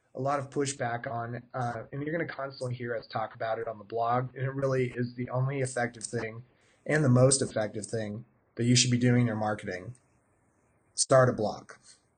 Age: 30-49